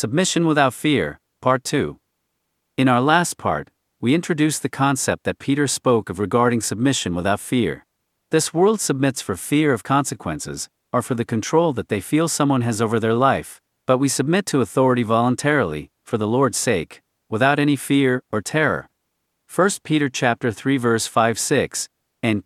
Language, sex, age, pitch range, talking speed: English, male, 50-69, 110-145 Hz, 165 wpm